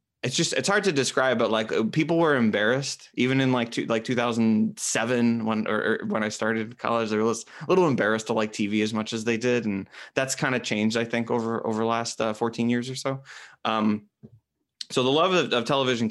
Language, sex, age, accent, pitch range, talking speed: English, male, 20-39, American, 105-120 Hz, 225 wpm